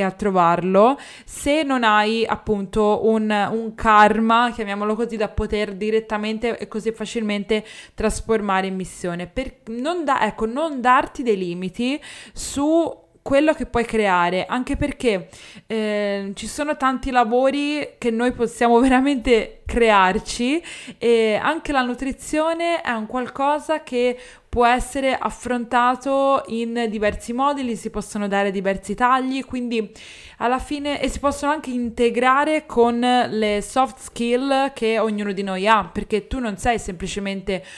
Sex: female